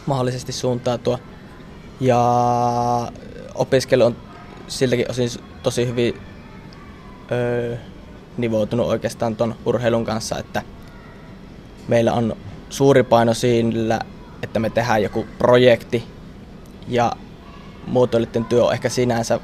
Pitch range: 110-120 Hz